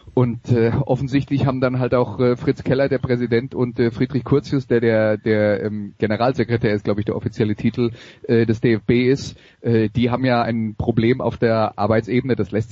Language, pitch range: German, 115-135 Hz